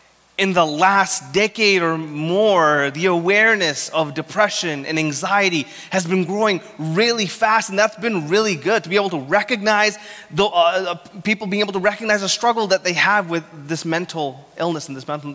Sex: male